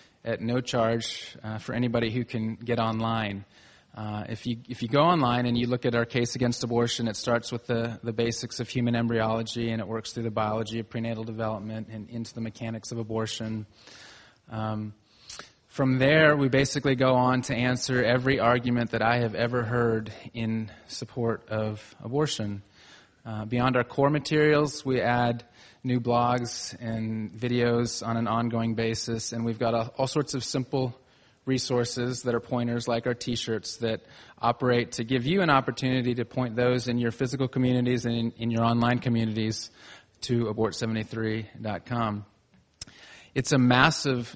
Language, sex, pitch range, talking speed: English, male, 115-125 Hz, 165 wpm